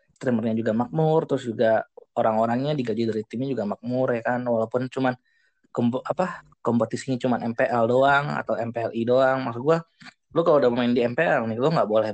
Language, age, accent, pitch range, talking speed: Indonesian, 20-39, native, 115-135 Hz, 175 wpm